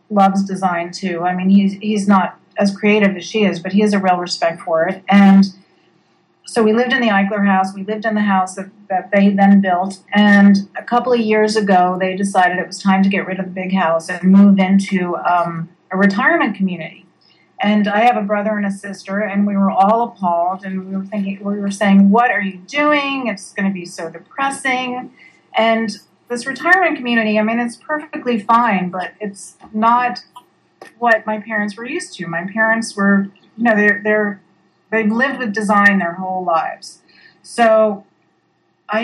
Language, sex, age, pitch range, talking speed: English, female, 40-59, 185-220 Hz, 195 wpm